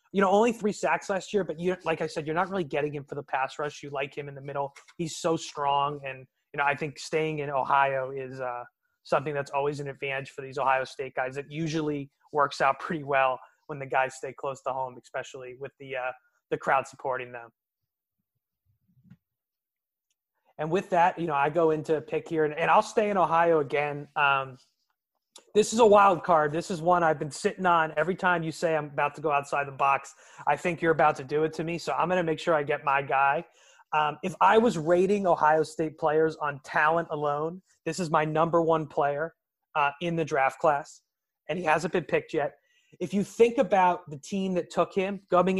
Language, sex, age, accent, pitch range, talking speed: English, male, 30-49, American, 140-170 Hz, 225 wpm